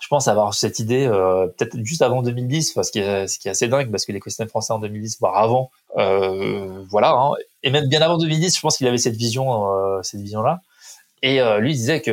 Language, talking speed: French, 250 wpm